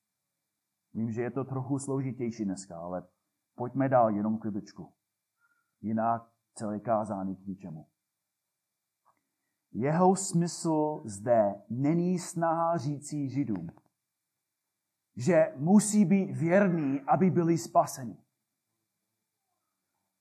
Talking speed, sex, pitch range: 90 wpm, male, 130-195 Hz